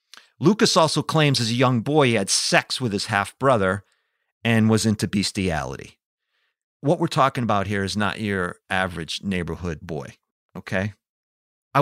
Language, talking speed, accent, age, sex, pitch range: English, 150 wpm, American, 50-69, male, 95-140 Hz